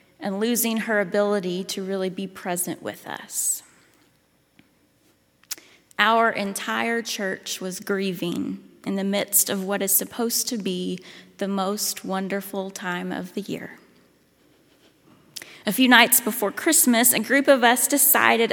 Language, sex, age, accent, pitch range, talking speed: English, female, 30-49, American, 195-240 Hz, 135 wpm